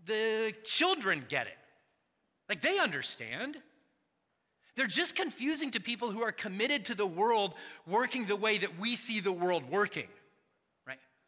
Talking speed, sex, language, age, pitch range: 150 wpm, male, English, 30-49, 180-240 Hz